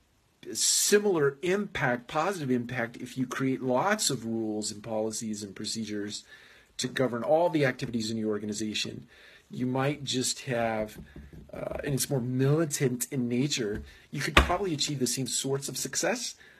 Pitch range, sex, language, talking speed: 115-140 Hz, male, English, 150 wpm